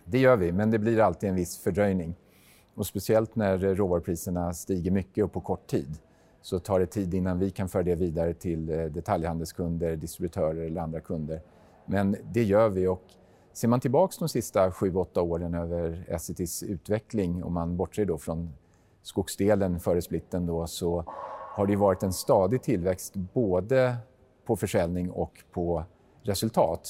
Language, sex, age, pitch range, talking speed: Swedish, male, 40-59, 85-100 Hz, 165 wpm